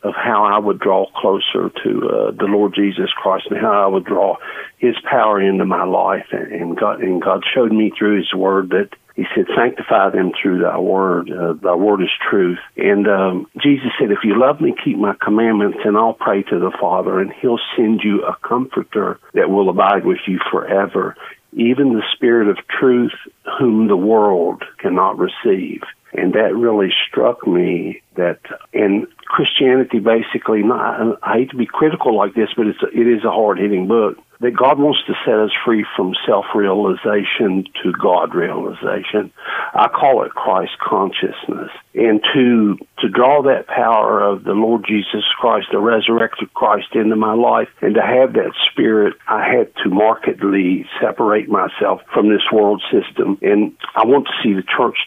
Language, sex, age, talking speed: English, male, 50-69, 175 wpm